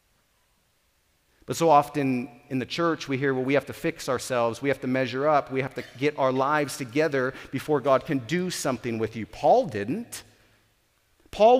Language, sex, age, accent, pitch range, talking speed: English, male, 40-59, American, 130-220 Hz, 185 wpm